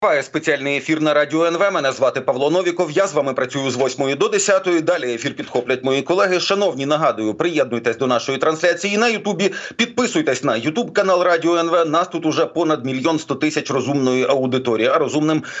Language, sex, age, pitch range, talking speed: Ukrainian, male, 40-59, 140-190 Hz, 180 wpm